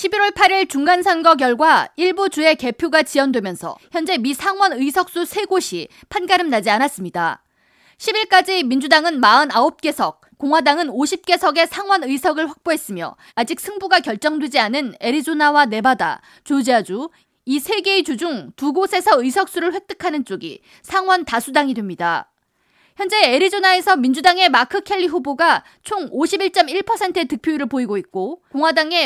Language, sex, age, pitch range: Korean, female, 20-39, 260-365 Hz